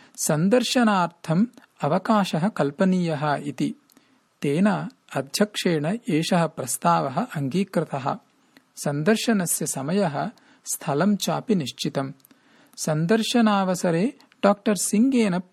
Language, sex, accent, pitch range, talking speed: English, male, Indian, 165-235 Hz, 65 wpm